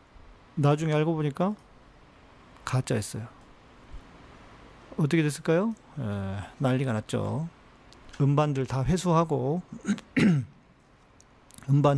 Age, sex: 40-59, male